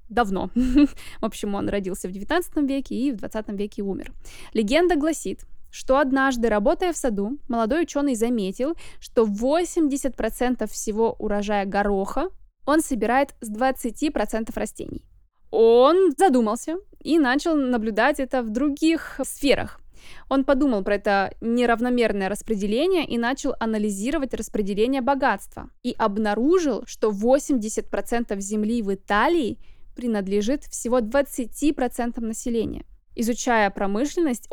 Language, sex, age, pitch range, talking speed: Russian, female, 20-39, 215-275 Hz, 115 wpm